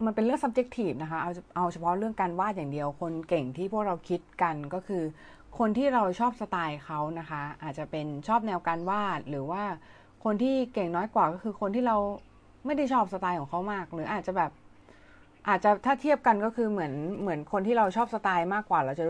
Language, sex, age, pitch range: Thai, female, 30-49, 160-210 Hz